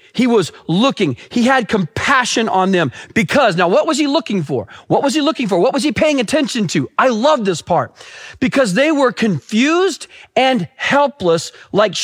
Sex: male